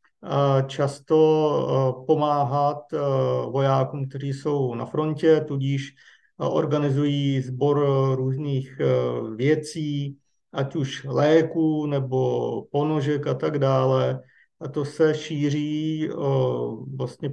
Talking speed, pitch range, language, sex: 90 wpm, 140-160 Hz, Slovak, male